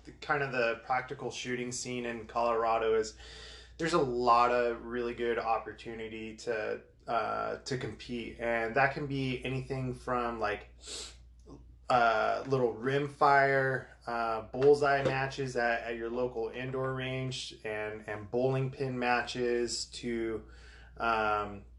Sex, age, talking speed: male, 20-39, 125 wpm